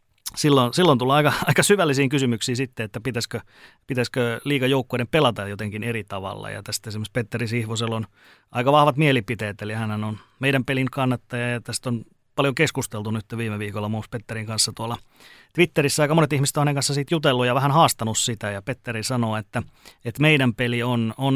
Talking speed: 185 wpm